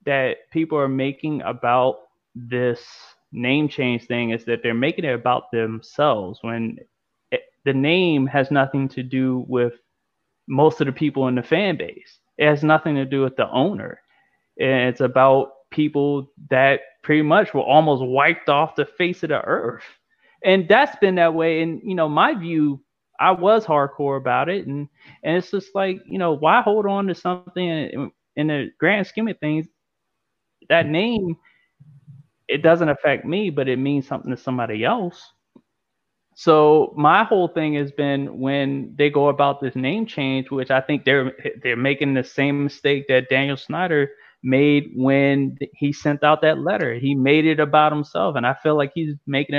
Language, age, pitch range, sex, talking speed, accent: English, 20-39, 130-160 Hz, male, 175 wpm, American